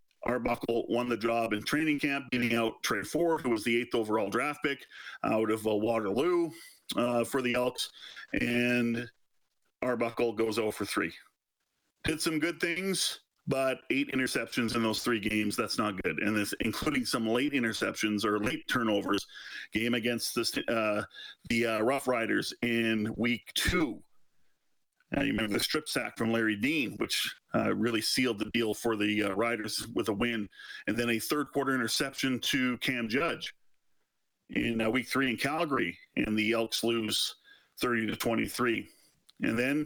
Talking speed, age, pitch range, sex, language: 165 wpm, 40-59, 115-145 Hz, male, English